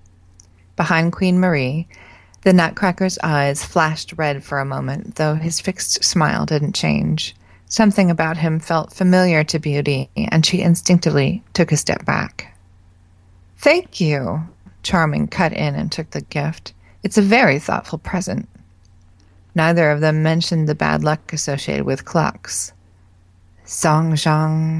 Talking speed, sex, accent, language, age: 140 wpm, female, American, English, 30-49